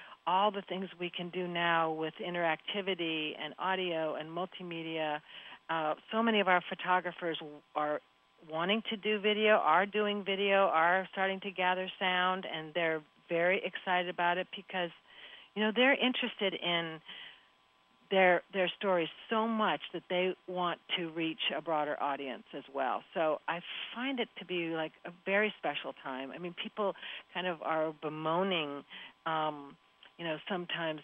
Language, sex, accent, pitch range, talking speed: English, female, American, 160-195 Hz, 160 wpm